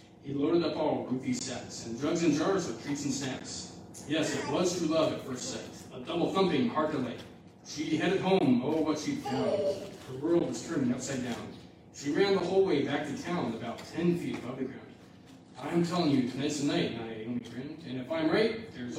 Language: English